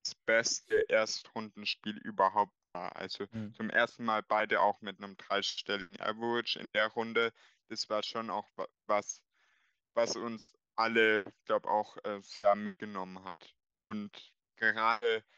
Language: German